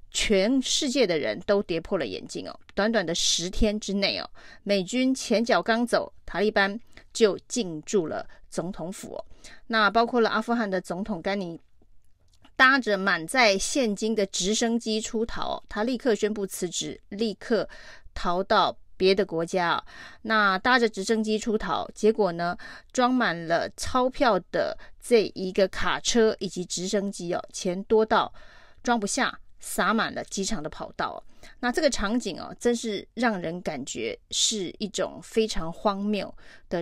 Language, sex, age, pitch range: Chinese, female, 30-49, 195-235 Hz